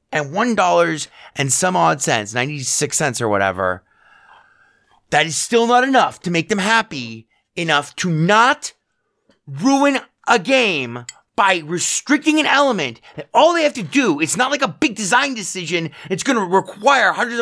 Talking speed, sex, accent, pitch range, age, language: 165 wpm, male, American, 155-235 Hz, 30-49, English